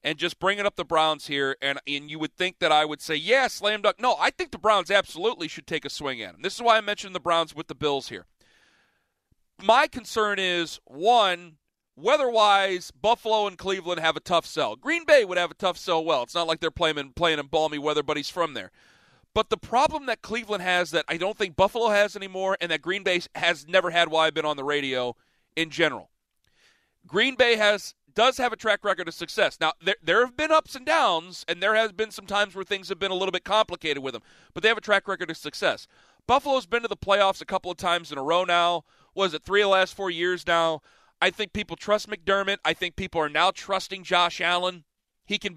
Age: 40-59